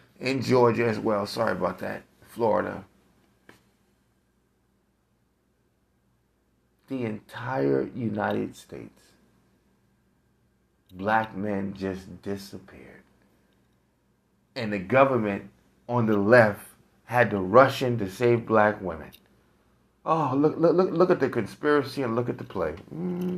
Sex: male